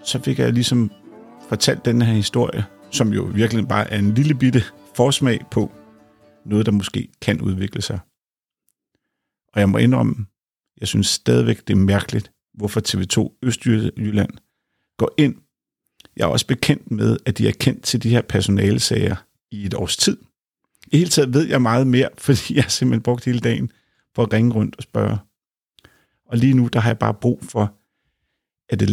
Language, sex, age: Danish, male, 50-69